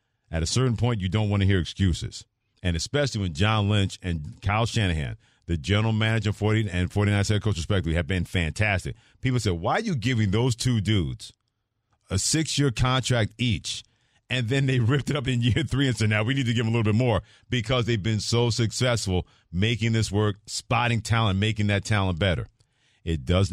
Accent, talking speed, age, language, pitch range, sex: American, 205 wpm, 40-59, English, 90-115 Hz, male